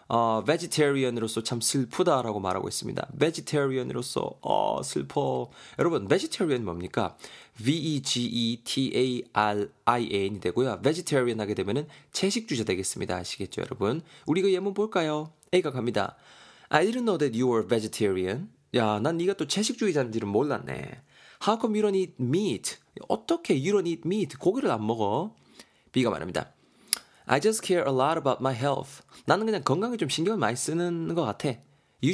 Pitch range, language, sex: 115-160 Hz, Korean, male